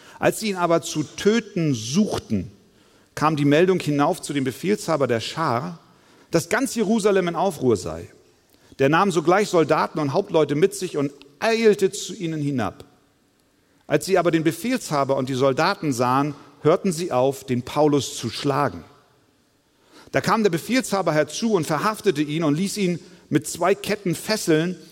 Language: German